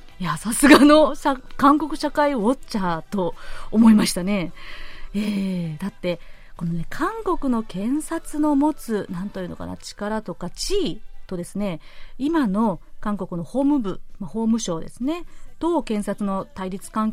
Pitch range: 185-260 Hz